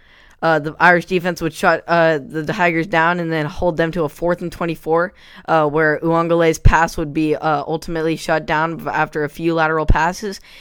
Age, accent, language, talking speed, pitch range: 10-29, American, English, 200 wpm, 140-165 Hz